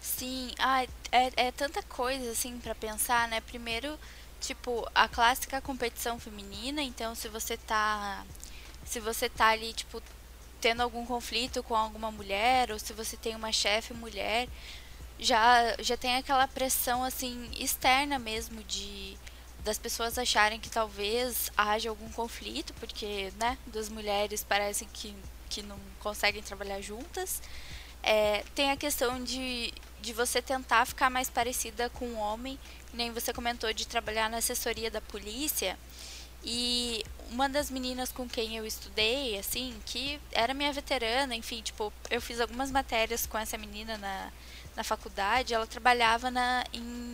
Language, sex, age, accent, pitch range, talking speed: Portuguese, female, 10-29, Brazilian, 220-255 Hz, 150 wpm